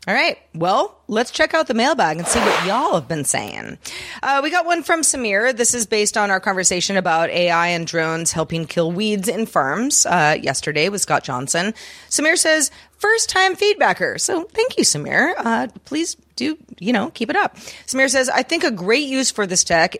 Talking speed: 200 wpm